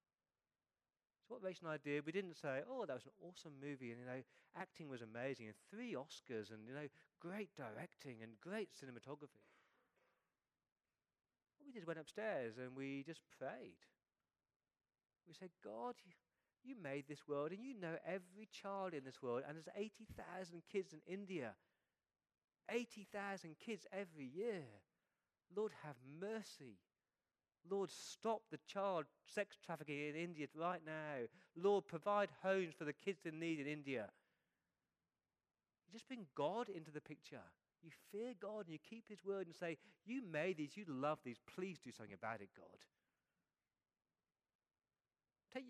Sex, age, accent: male, 40-59, British